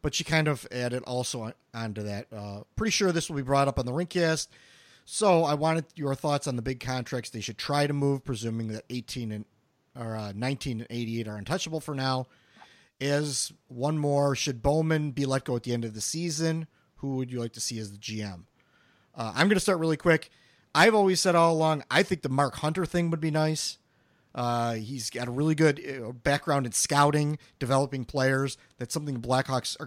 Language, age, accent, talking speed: English, 40-59, American, 215 wpm